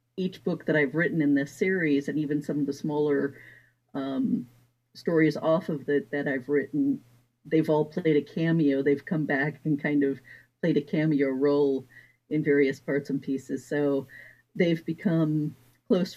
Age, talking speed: 50-69, 170 wpm